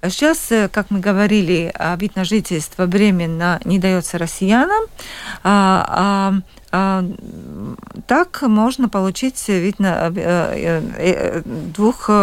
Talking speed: 85 wpm